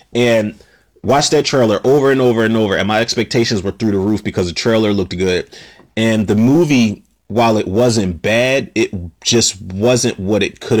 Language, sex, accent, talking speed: English, male, American, 190 wpm